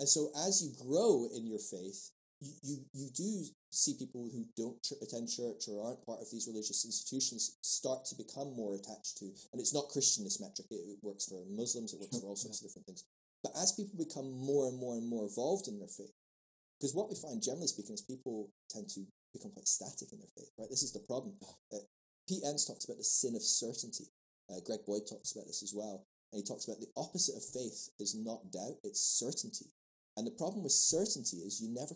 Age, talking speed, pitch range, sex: 20-39, 225 wpm, 105-140 Hz, male